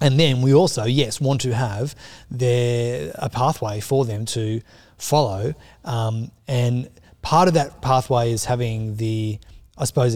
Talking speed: 155 wpm